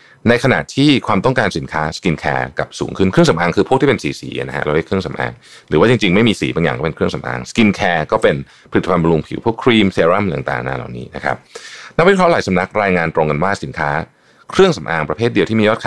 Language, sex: Thai, male